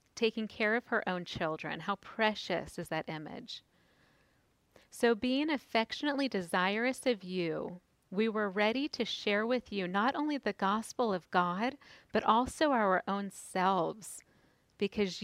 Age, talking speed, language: 40-59, 140 wpm, English